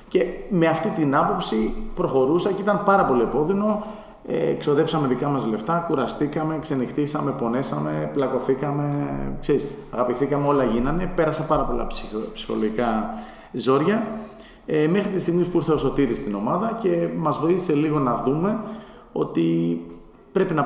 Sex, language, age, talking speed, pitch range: male, Greek, 30-49, 135 wpm, 120-160 Hz